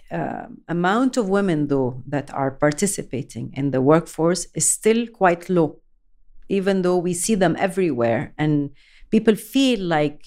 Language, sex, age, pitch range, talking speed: English, female, 40-59, 150-195 Hz, 145 wpm